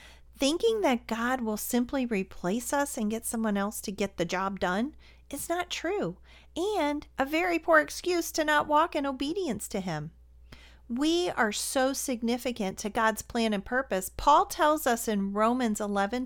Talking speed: 170 wpm